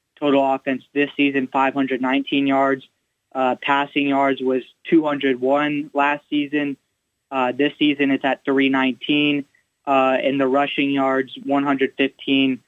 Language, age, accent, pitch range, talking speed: English, 20-39, American, 135-145 Hz, 120 wpm